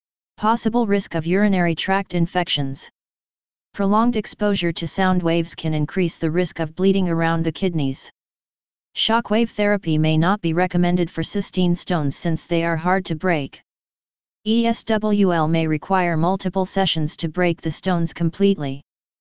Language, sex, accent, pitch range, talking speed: English, female, American, 165-195 Hz, 140 wpm